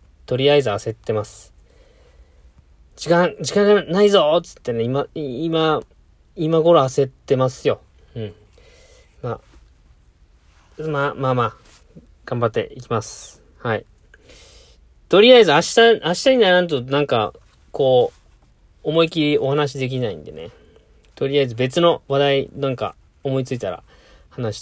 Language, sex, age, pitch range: Japanese, male, 20-39, 105-140 Hz